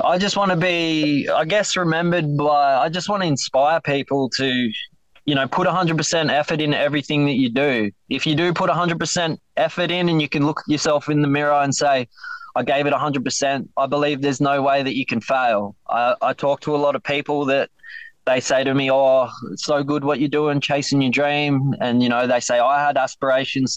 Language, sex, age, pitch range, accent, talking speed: English, male, 20-39, 125-150 Hz, Australian, 235 wpm